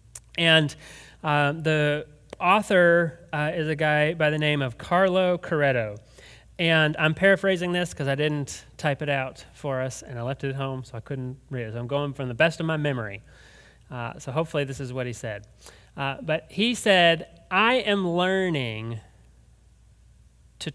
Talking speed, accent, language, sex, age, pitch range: 180 wpm, American, English, male, 30-49, 140-180 Hz